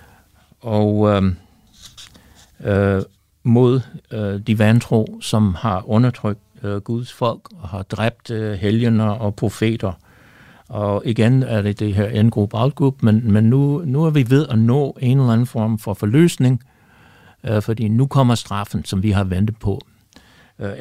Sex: male